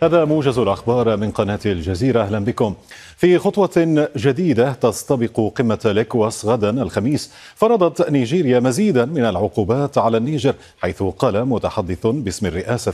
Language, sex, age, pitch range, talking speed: Arabic, male, 40-59, 100-130 Hz, 130 wpm